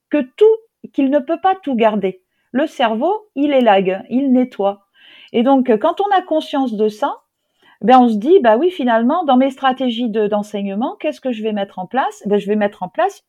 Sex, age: female, 50-69